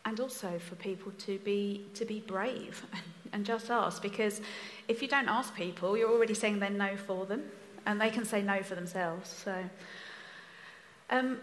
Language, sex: English, female